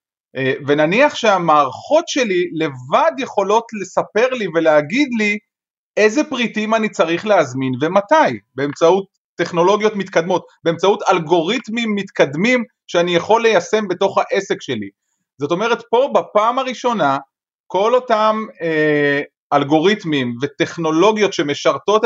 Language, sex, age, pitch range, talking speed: Hebrew, male, 30-49, 150-220 Hz, 100 wpm